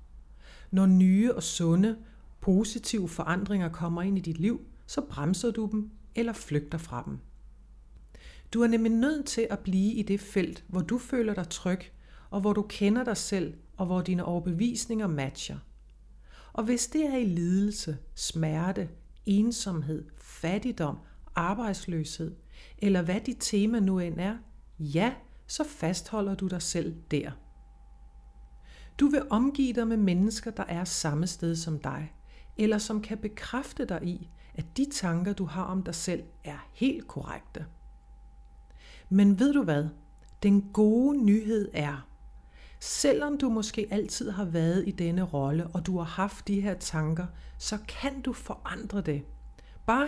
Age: 60-79